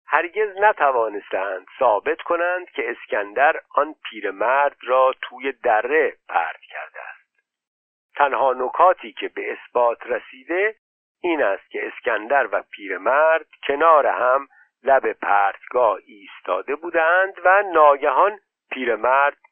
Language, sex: Persian, male